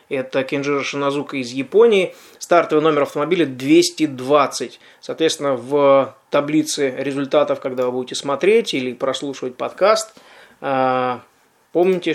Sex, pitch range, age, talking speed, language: male, 135-160 Hz, 20-39, 105 wpm, Russian